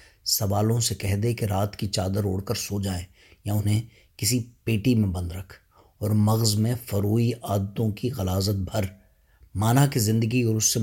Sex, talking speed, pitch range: male, 185 wpm, 95-120 Hz